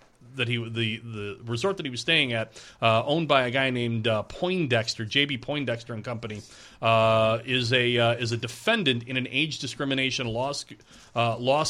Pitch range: 120-155 Hz